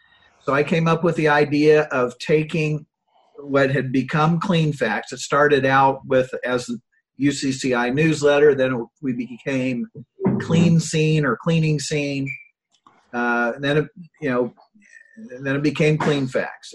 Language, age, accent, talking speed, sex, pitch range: English, 50-69, American, 145 wpm, male, 130-155 Hz